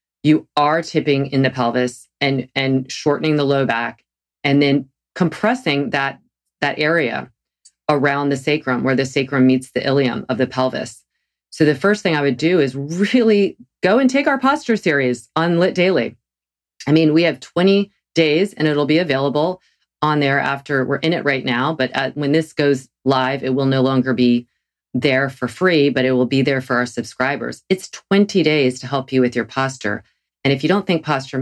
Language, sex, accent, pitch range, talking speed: English, female, American, 130-155 Hz, 195 wpm